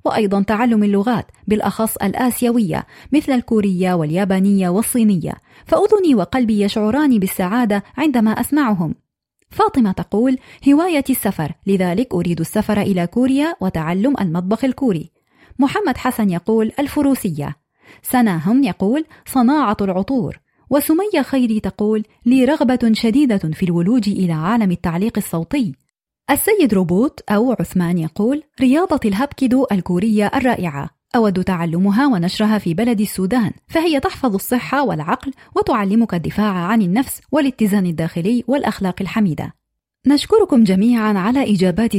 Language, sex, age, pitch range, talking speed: Arabic, female, 30-49, 195-265 Hz, 110 wpm